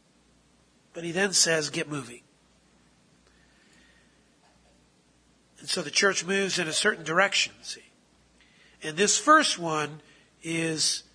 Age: 40-59